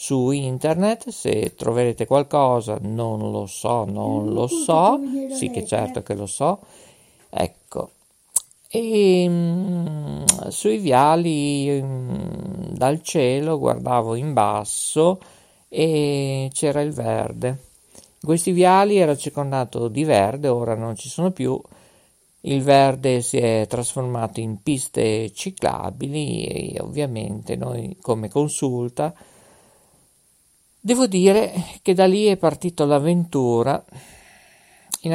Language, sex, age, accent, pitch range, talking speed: Italian, male, 50-69, native, 115-170 Hz, 110 wpm